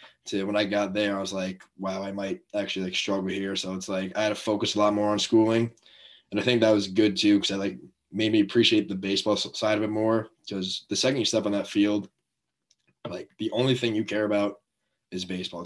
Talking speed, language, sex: 240 wpm, English, male